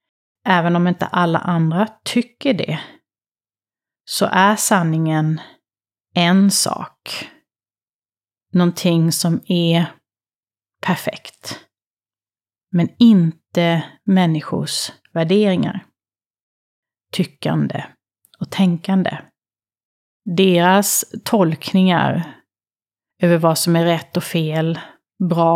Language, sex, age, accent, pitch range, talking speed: Swedish, female, 30-49, native, 155-185 Hz, 75 wpm